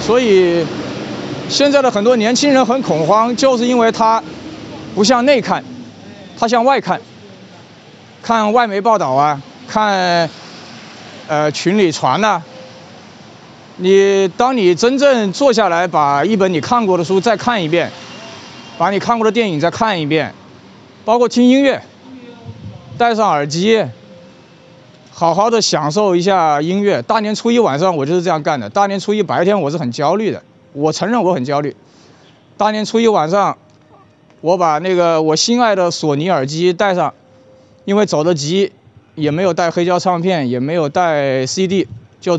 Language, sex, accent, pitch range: Chinese, male, native, 150-225 Hz